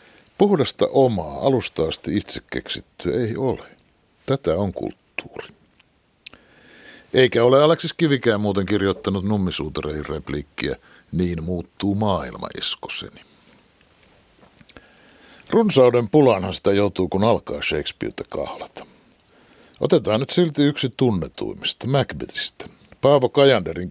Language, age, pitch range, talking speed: Finnish, 60-79, 90-130 Hz, 95 wpm